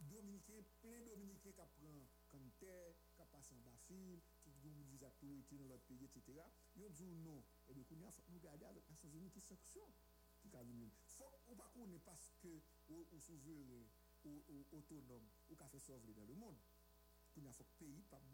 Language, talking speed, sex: English, 185 wpm, male